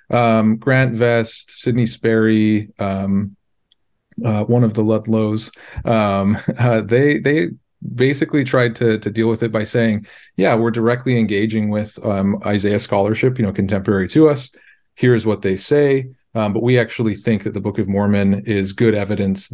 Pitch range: 100-115 Hz